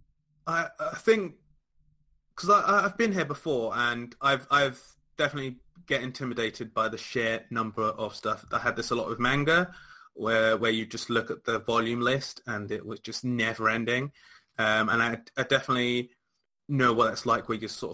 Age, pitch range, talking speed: 20-39, 110-150 Hz, 175 wpm